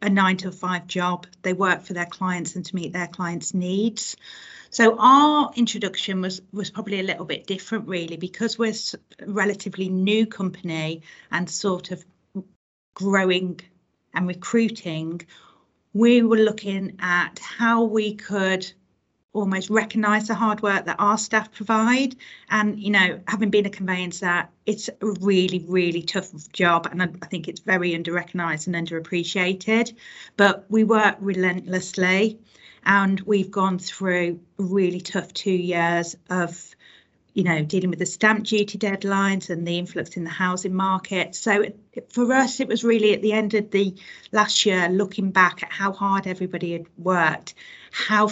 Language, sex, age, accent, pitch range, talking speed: English, female, 40-59, British, 180-215 Hz, 160 wpm